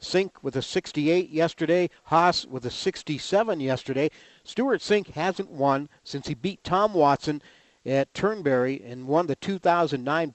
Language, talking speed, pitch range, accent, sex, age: English, 145 wpm, 140-185 Hz, American, male, 50-69